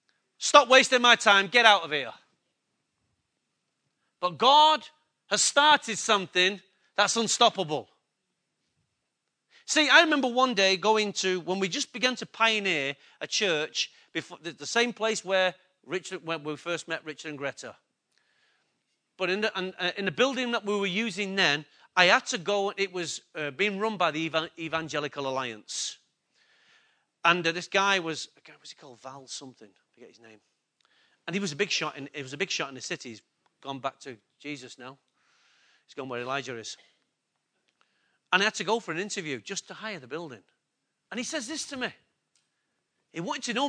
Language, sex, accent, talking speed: English, male, British, 175 wpm